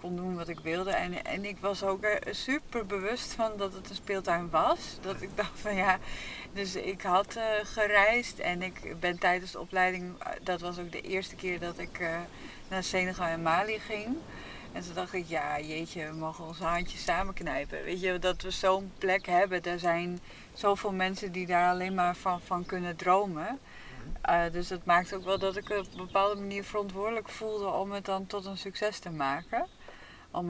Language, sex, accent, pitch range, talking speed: Dutch, female, Dutch, 175-200 Hz, 205 wpm